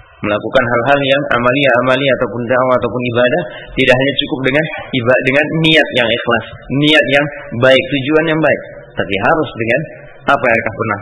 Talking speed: 160 wpm